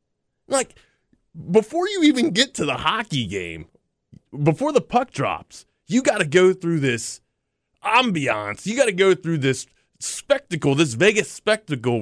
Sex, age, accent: male, 30-49, American